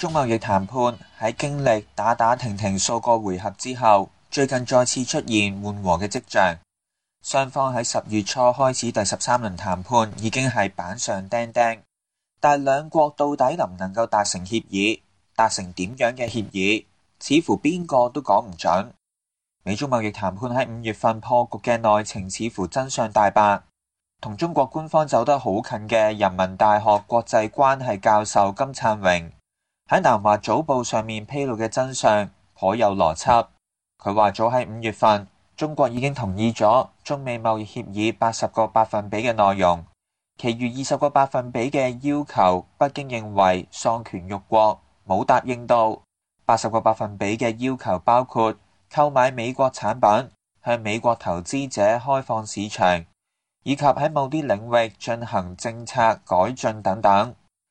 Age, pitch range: 20-39, 100-130 Hz